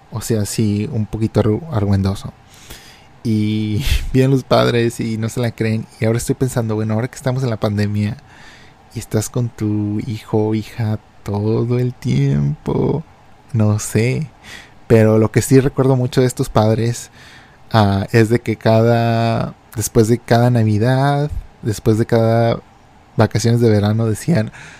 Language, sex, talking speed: Spanish, male, 155 wpm